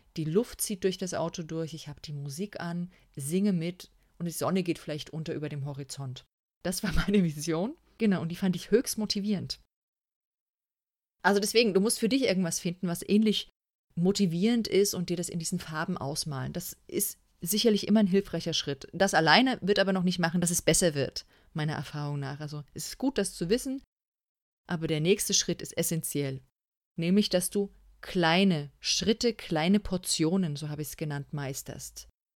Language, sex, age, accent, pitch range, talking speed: German, female, 30-49, German, 155-205 Hz, 185 wpm